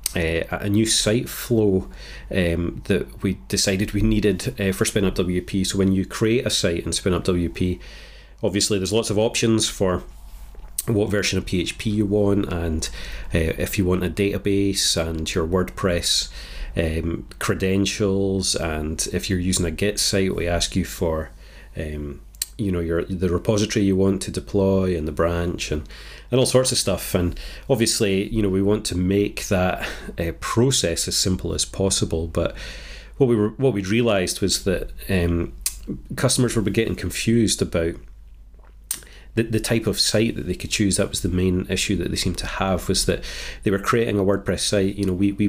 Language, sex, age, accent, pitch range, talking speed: English, male, 30-49, British, 85-105 Hz, 185 wpm